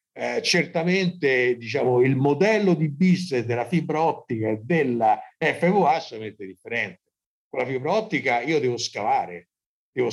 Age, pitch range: 50-69, 115-160 Hz